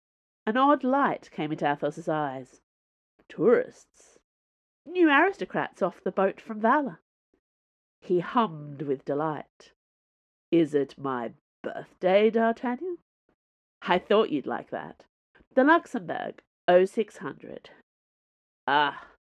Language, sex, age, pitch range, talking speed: English, female, 40-59, 155-240 Hz, 105 wpm